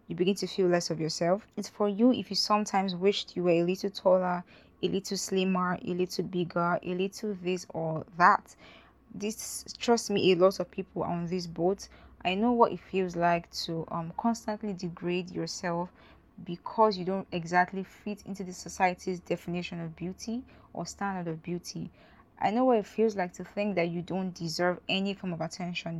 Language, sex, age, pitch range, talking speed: English, female, 10-29, 175-205 Hz, 190 wpm